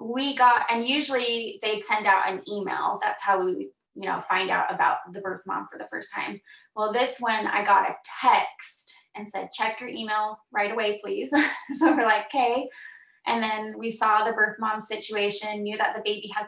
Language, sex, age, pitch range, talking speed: English, female, 20-39, 200-235 Hz, 205 wpm